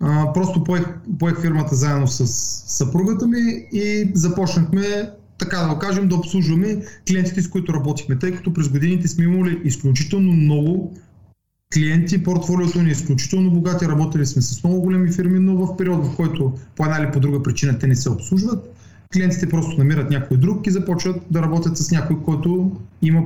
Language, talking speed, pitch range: Bulgarian, 180 wpm, 140-180 Hz